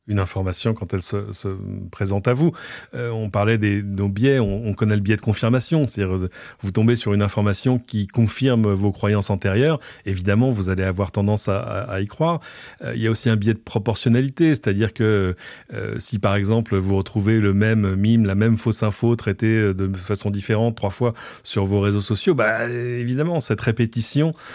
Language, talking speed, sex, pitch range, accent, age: French, 195 wpm, male, 105-125 Hz, French, 30-49